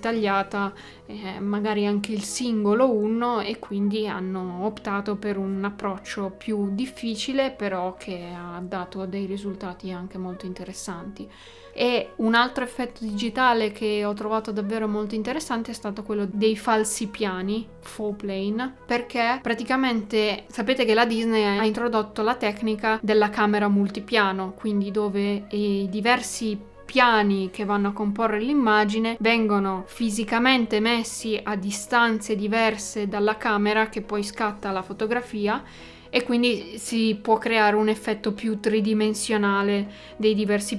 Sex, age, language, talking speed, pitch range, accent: female, 20-39, Italian, 135 wpm, 205-230 Hz, native